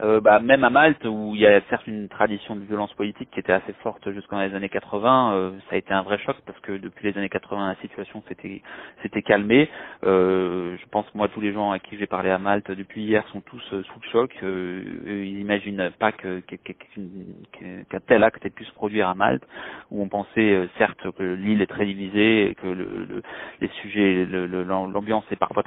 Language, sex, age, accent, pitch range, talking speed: French, male, 30-49, French, 95-105 Hz, 230 wpm